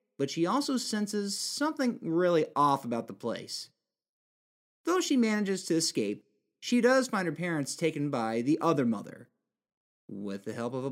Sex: male